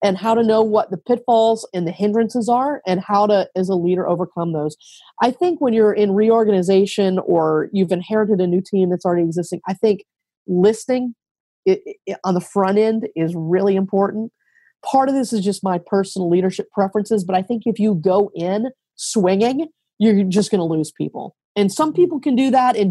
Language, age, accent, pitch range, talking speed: English, 30-49, American, 180-220 Hz, 195 wpm